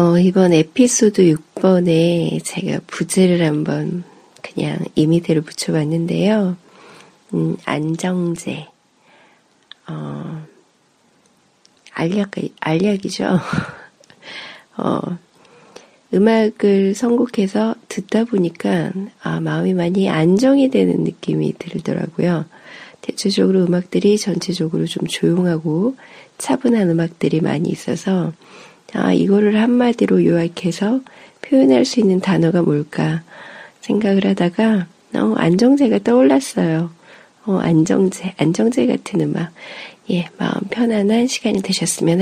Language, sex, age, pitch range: Korean, female, 40-59, 170-215 Hz